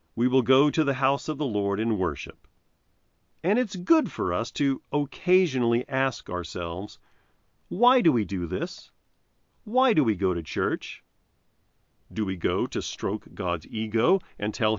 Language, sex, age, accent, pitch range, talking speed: English, male, 40-59, American, 95-140 Hz, 160 wpm